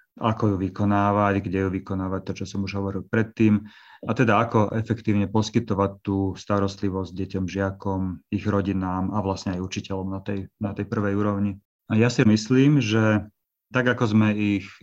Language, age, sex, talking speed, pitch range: Slovak, 30-49, male, 170 wpm, 95-110 Hz